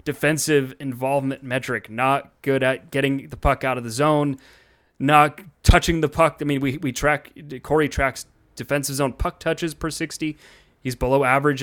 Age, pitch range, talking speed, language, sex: 20-39, 135-160 Hz, 170 wpm, English, male